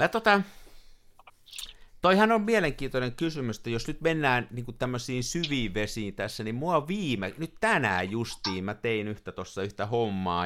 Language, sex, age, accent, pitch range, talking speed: Finnish, male, 50-69, native, 100-140 Hz, 155 wpm